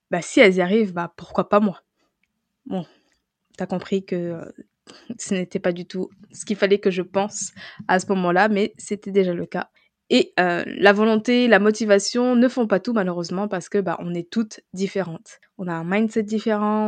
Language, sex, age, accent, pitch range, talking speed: French, female, 20-39, French, 195-230 Hz, 195 wpm